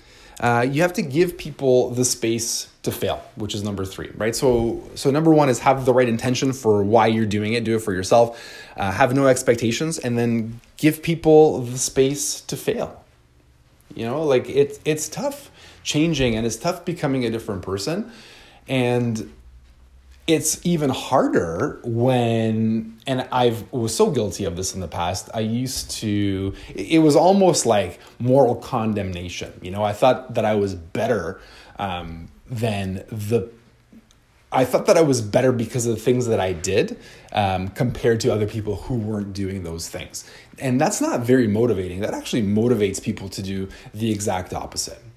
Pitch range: 100-130 Hz